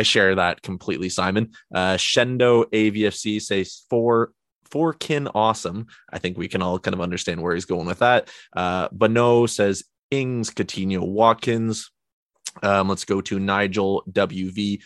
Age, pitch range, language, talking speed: 20-39, 95-110 Hz, English, 155 wpm